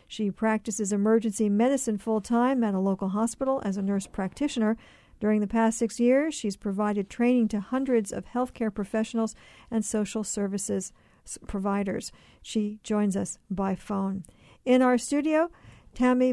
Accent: American